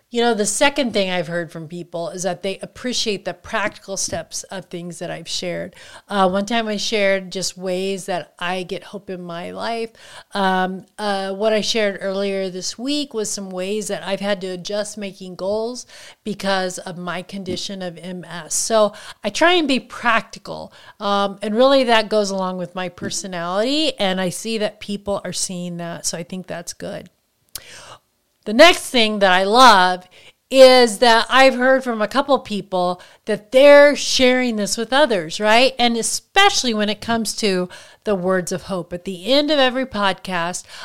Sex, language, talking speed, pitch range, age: female, English, 180 wpm, 185-230 Hz, 40-59